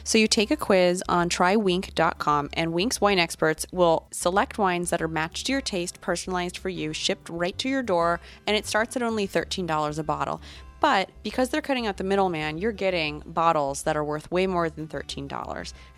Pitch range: 155-210 Hz